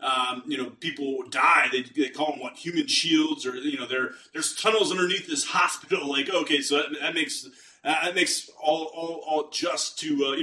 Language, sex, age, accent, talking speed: English, male, 30-49, American, 215 wpm